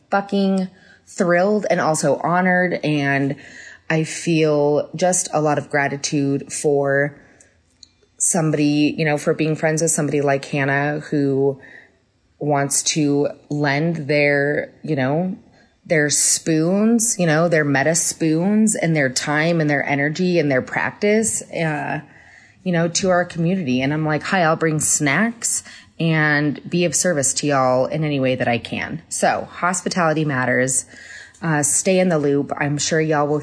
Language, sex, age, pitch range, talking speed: English, female, 20-39, 140-165 Hz, 150 wpm